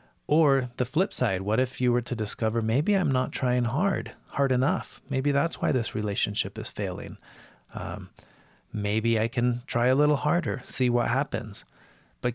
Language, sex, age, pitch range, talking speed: English, male, 30-49, 110-140 Hz, 175 wpm